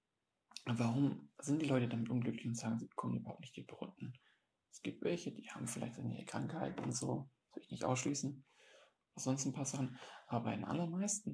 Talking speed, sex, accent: 195 wpm, male, German